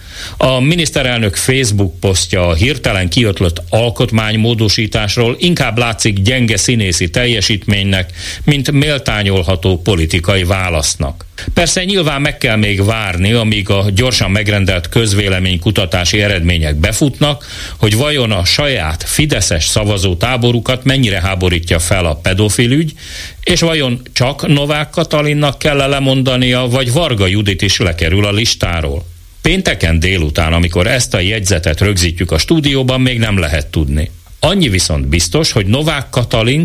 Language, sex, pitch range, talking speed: Hungarian, male, 90-125 Hz, 125 wpm